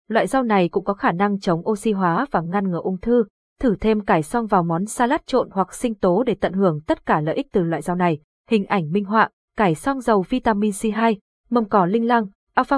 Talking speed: 240 wpm